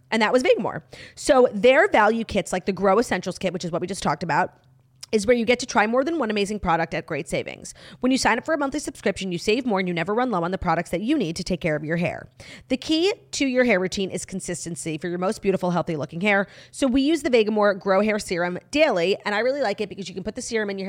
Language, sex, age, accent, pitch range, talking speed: English, female, 30-49, American, 175-245 Hz, 285 wpm